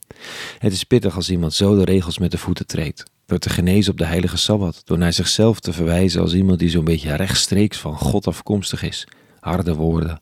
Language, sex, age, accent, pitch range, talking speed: Dutch, male, 40-59, Dutch, 90-105 Hz, 210 wpm